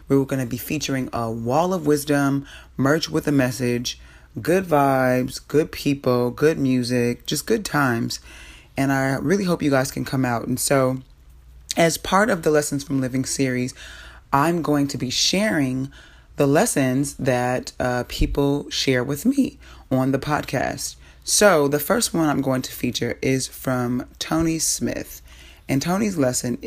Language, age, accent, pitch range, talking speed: English, 30-49, American, 125-155 Hz, 160 wpm